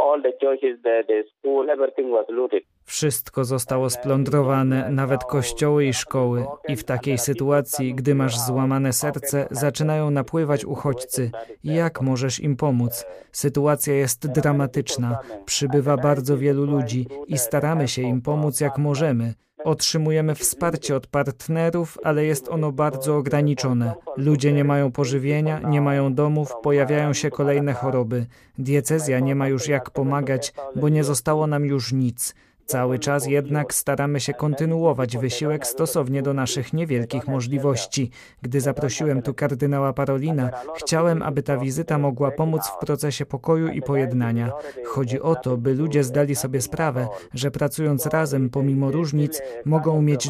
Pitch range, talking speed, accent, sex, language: 130-150 Hz, 130 wpm, native, male, Polish